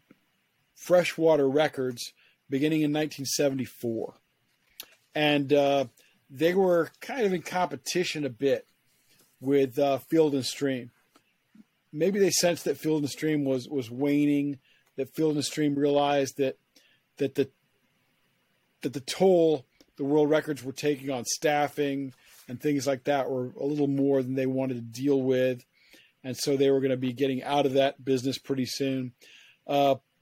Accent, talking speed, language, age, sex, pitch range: American, 155 wpm, English, 40-59, male, 135-165 Hz